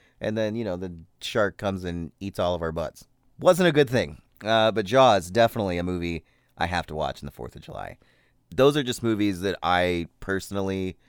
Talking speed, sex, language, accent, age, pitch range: 210 wpm, male, English, American, 30-49, 90-130 Hz